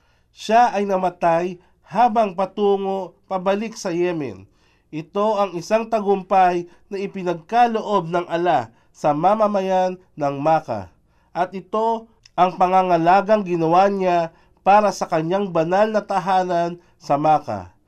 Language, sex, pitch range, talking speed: Filipino, male, 160-205 Hz, 115 wpm